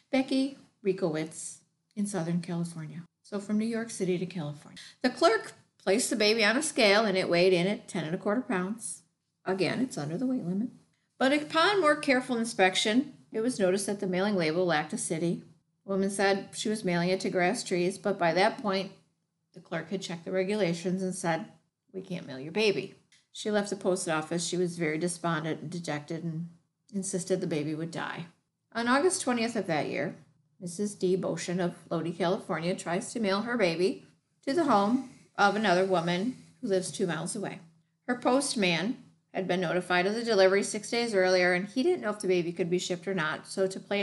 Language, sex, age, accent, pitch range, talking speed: English, female, 50-69, American, 170-210 Hz, 205 wpm